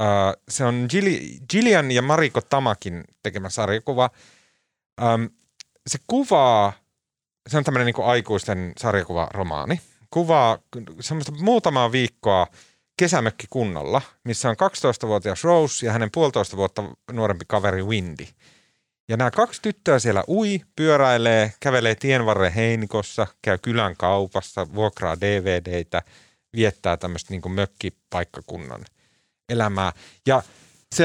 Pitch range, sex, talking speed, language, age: 100-140 Hz, male, 105 wpm, Finnish, 30-49